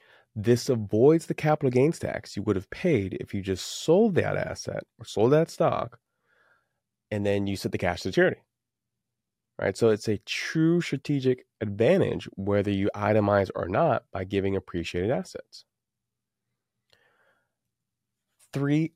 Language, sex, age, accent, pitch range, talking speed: English, male, 20-39, American, 95-125 Hz, 140 wpm